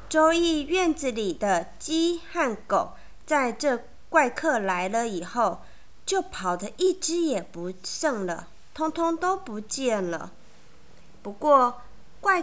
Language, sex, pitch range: Chinese, female, 220-315 Hz